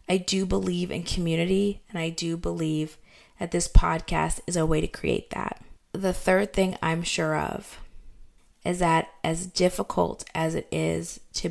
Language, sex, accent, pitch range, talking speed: English, female, American, 150-180 Hz, 165 wpm